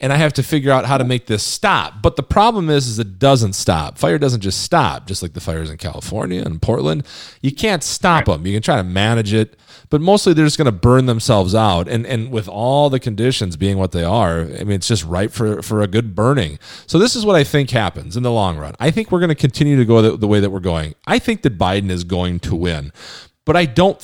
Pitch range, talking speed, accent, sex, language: 100-140 Hz, 265 wpm, American, male, English